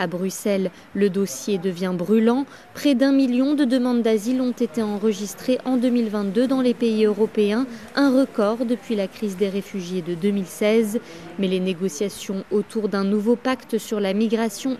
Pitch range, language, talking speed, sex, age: 210-260 Hz, French, 160 wpm, female, 20-39